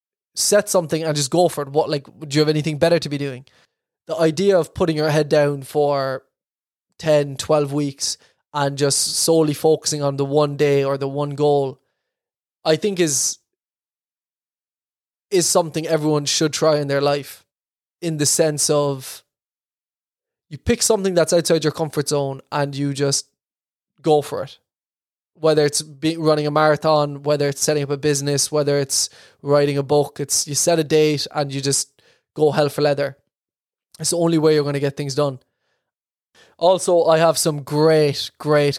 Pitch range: 145-160 Hz